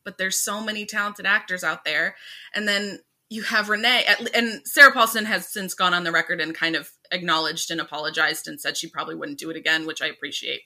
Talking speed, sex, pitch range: 220 wpm, female, 190-255 Hz